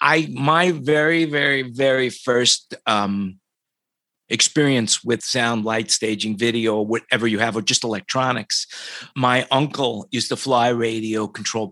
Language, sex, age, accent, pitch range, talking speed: English, male, 50-69, American, 115-140 Hz, 135 wpm